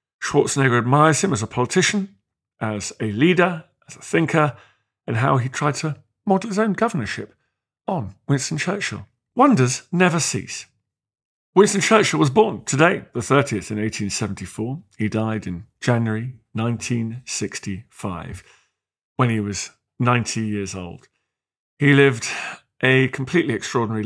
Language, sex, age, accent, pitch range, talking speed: English, male, 40-59, British, 105-135 Hz, 130 wpm